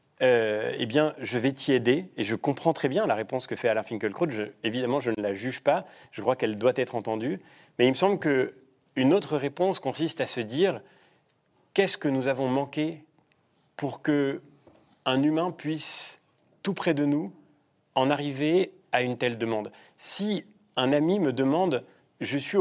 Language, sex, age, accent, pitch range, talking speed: French, male, 40-59, French, 125-165 Hz, 180 wpm